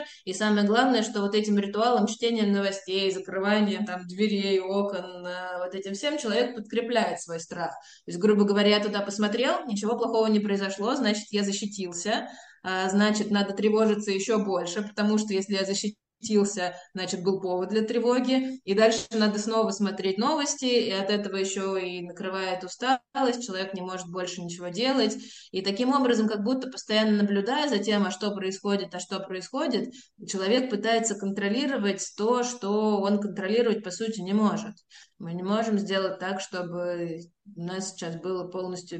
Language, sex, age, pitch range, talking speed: Russian, female, 20-39, 190-235 Hz, 160 wpm